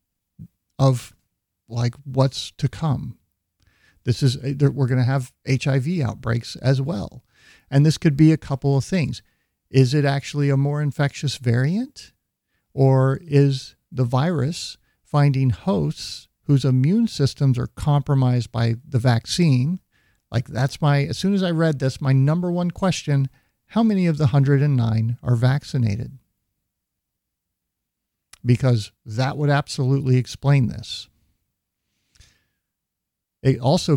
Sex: male